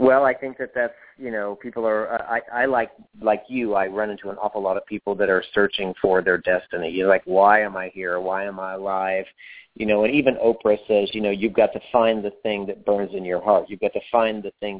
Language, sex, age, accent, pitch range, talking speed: English, male, 40-59, American, 100-120 Hz, 255 wpm